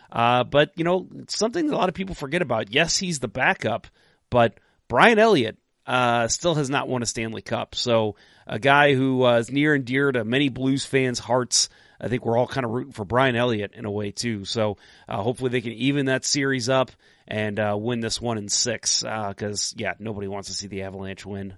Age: 30-49